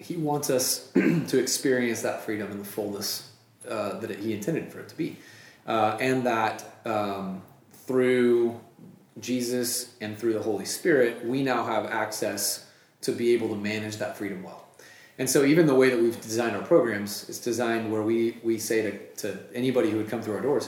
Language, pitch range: English, 110-130 Hz